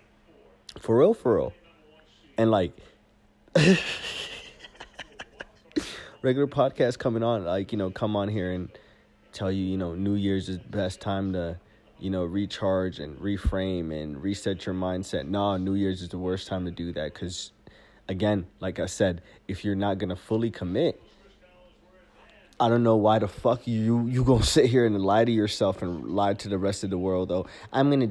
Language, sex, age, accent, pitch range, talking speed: English, male, 20-39, American, 90-110 Hz, 185 wpm